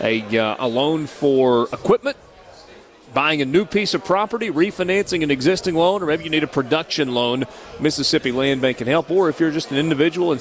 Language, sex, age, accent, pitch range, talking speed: English, male, 40-59, American, 135-185 Hz, 200 wpm